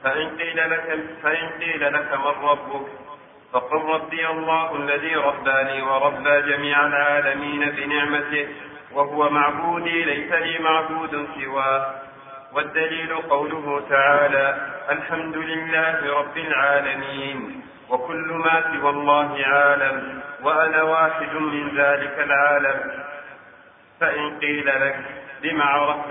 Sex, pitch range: male, 145-160 Hz